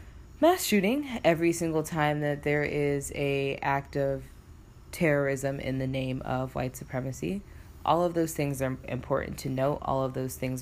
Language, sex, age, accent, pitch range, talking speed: English, female, 20-39, American, 130-140 Hz, 170 wpm